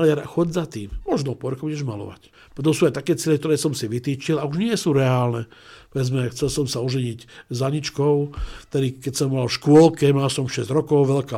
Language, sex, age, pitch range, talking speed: Slovak, male, 60-79, 120-150 Hz, 210 wpm